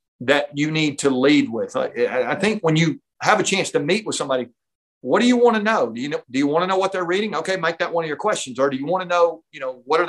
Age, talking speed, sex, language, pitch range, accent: 40-59, 305 wpm, male, English, 140-185 Hz, American